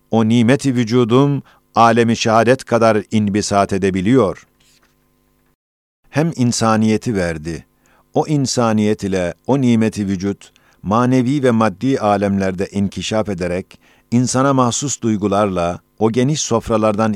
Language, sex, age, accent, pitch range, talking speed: Turkish, male, 50-69, native, 100-130 Hz, 100 wpm